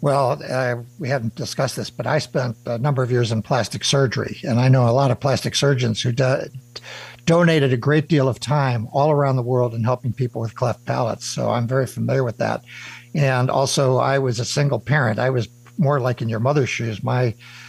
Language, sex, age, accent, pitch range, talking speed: English, male, 60-79, American, 120-145 Hz, 215 wpm